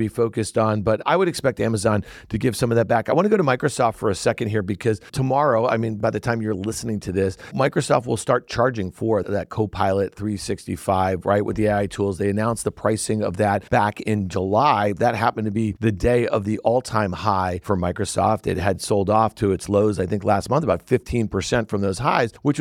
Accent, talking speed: American, 230 wpm